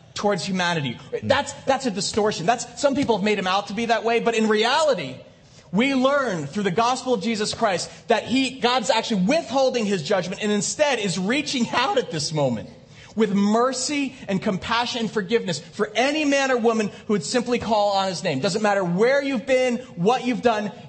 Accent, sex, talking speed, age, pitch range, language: American, male, 200 wpm, 30-49, 175-240 Hz, English